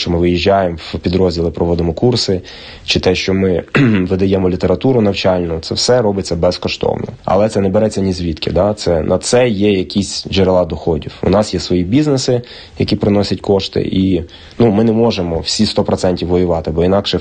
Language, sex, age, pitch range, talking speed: Ukrainian, male, 20-39, 85-105 Hz, 175 wpm